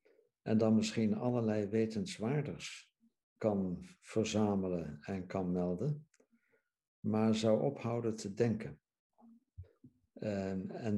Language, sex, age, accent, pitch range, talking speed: Dutch, male, 60-79, Dutch, 100-120 Hz, 85 wpm